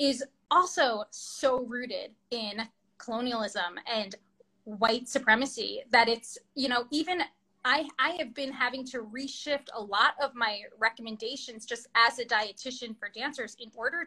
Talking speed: 145 wpm